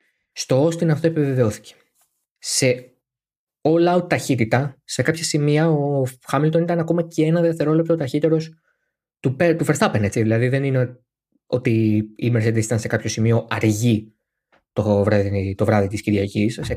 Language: Greek